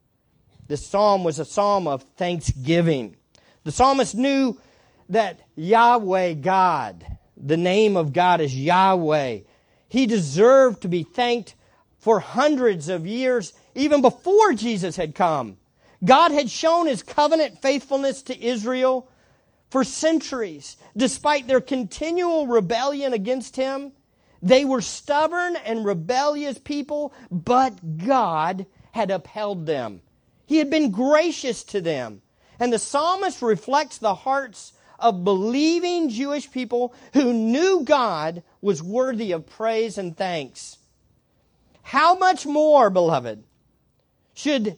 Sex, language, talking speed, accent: male, English, 120 wpm, American